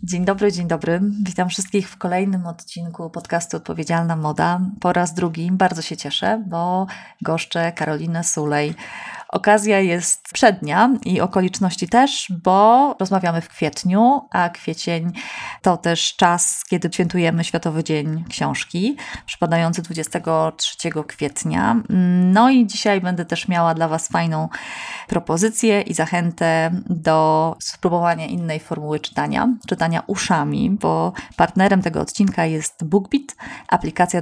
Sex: female